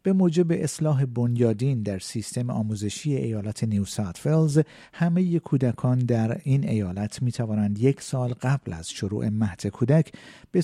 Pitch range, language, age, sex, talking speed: 110-145 Hz, Persian, 50-69, male, 140 wpm